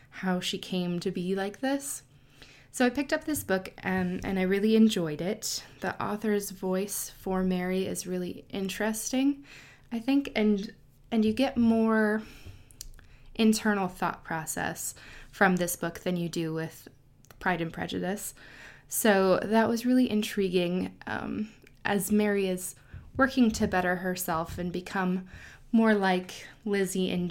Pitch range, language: 175-210 Hz, English